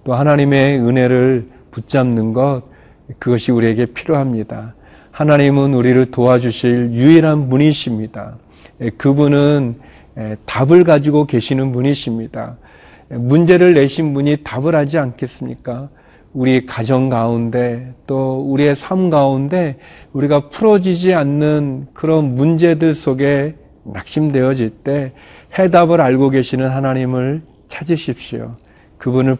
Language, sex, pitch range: Korean, male, 125-150 Hz